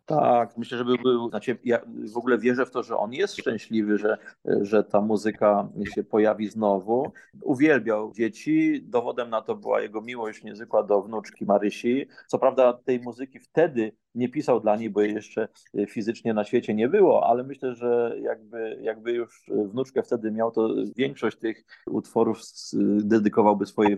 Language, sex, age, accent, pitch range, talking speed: Polish, male, 30-49, native, 115-135 Hz, 165 wpm